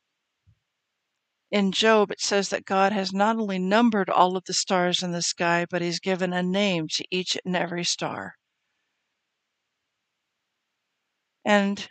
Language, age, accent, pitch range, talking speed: English, 60-79, American, 175-205 Hz, 140 wpm